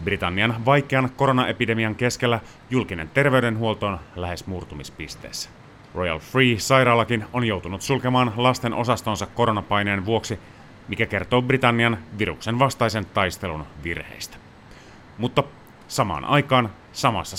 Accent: native